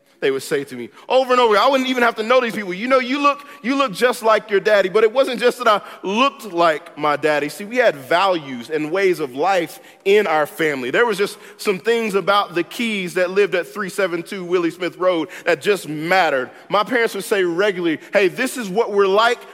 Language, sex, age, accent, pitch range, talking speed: English, male, 40-59, American, 165-225 Hz, 235 wpm